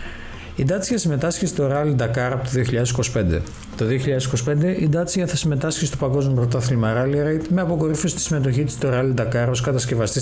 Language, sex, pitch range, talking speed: Greek, male, 115-150 Hz, 175 wpm